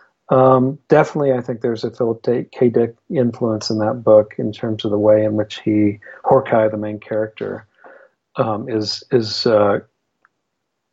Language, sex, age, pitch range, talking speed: English, male, 40-59, 110-135 Hz, 160 wpm